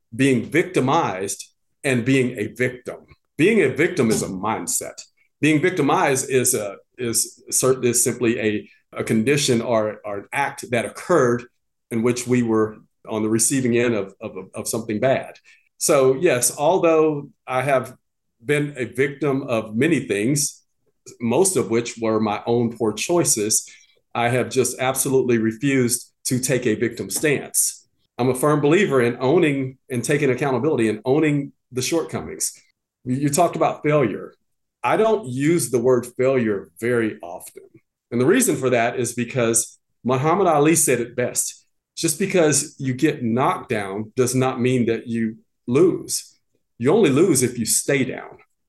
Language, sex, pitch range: English, male, 120-145 Hz